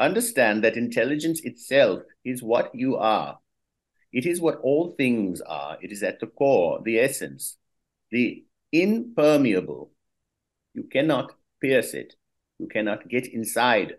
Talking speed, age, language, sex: 135 wpm, 60-79, English, male